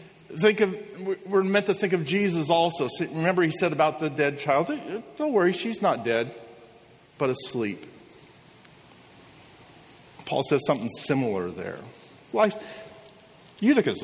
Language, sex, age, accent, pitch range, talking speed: English, male, 50-69, American, 145-205 Hz, 125 wpm